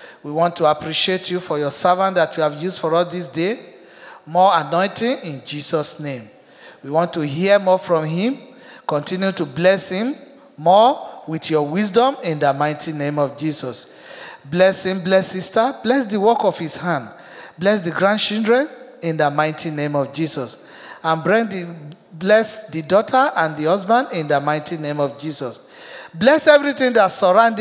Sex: male